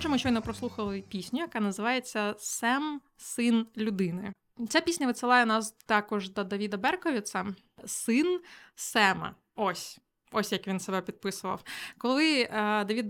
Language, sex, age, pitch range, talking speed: Ukrainian, female, 20-39, 195-240 Hz, 140 wpm